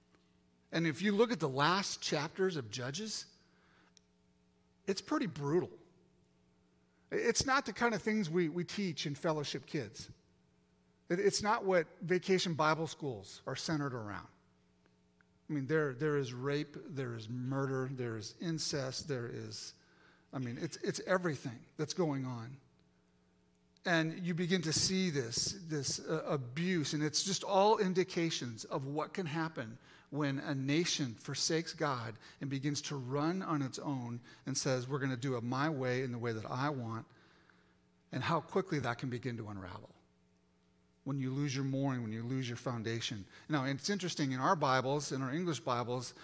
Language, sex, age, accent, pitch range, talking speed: English, male, 50-69, American, 115-160 Hz, 165 wpm